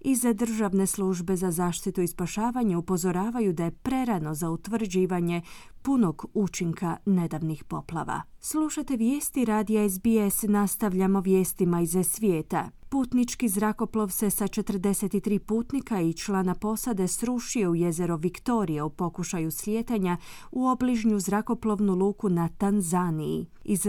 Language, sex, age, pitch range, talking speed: Croatian, female, 30-49, 175-225 Hz, 120 wpm